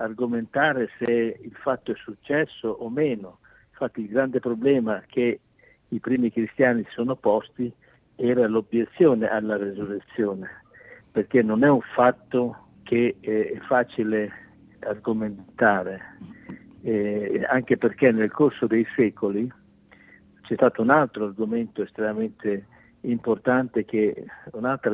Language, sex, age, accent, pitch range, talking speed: Italian, male, 60-79, native, 110-125 Hz, 115 wpm